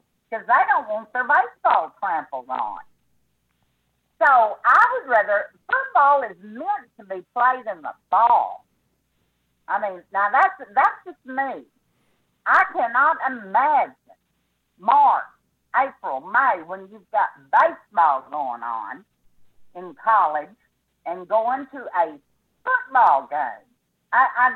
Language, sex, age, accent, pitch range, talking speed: English, female, 50-69, American, 220-330 Hz, 120 wpm